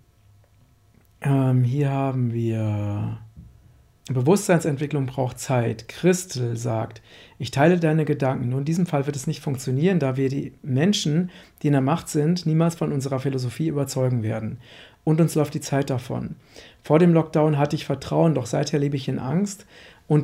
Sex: male